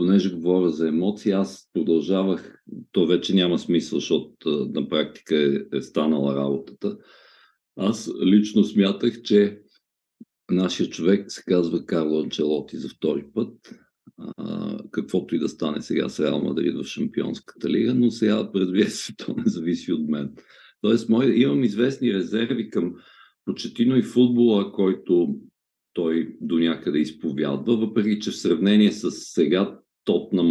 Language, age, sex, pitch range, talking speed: Bulgarian, 50-69, male, 80-110 Hz, 140 wpm